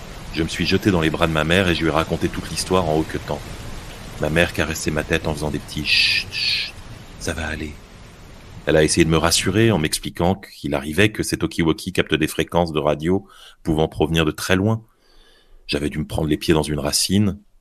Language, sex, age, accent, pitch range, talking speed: French, male, 30-49, French, 75-95 Hz, 225 wpm